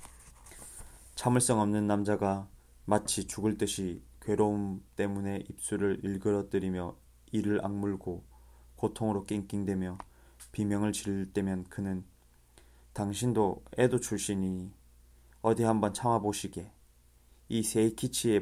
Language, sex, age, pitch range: Korean, male, 20-39, 65-105 Hz